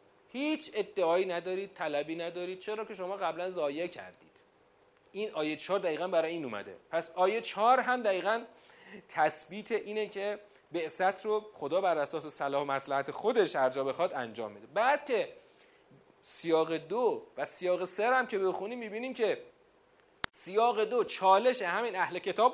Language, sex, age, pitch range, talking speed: Persian, male, 40-59, 170-265 Hz, 150 wpm